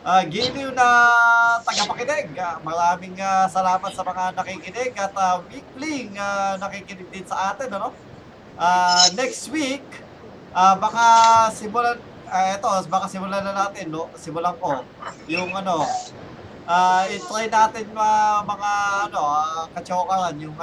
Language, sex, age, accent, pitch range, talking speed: Filipino, male, 20-39, native, 160-205 Hz, 140 wpm